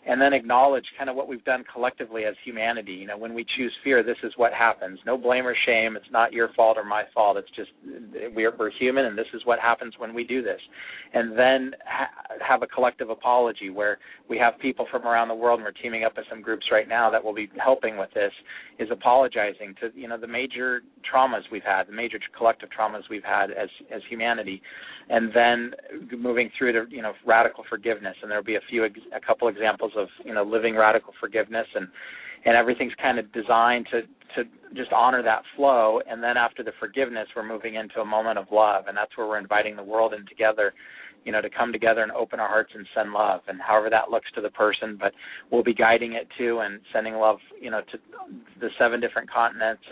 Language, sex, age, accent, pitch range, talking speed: English, male, 40-59, American, 110-120 Hz, 225 wpm